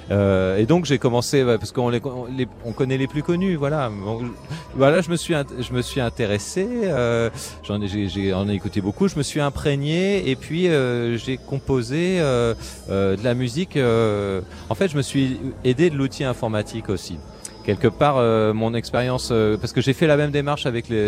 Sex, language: male, French